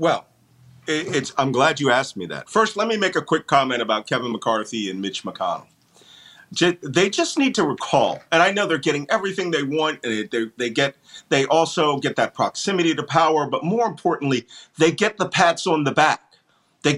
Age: 40-59